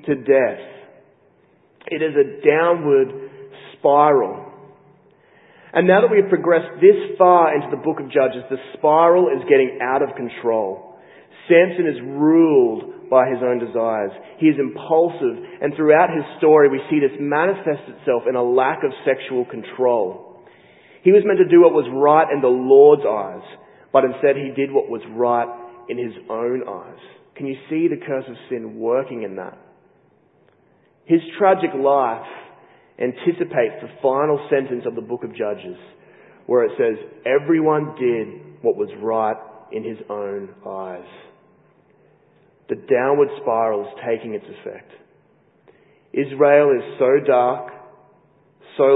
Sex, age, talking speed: male, 30-49, 150 wpm